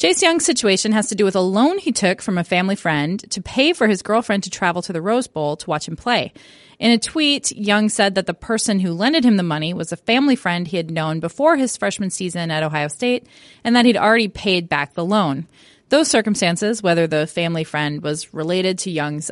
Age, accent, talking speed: 30-49, American, 235 wpm